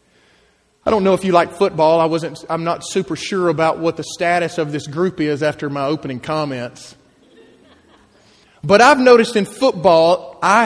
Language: English